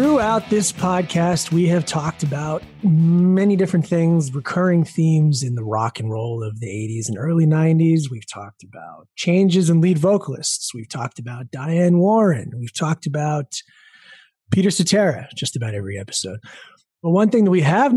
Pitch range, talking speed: 120-180 Hz, 165 wpm